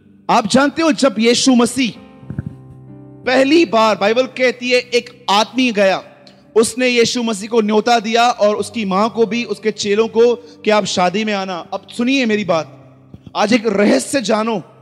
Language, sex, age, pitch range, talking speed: Hindi, male, 30-49, 200-245 Hz, 170 wpm